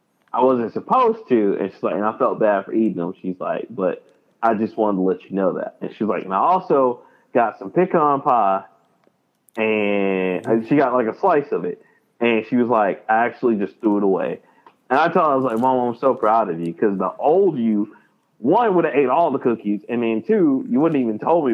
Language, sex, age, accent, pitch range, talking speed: English, male, 30-49, American, 95-115 Hz, 240 wpm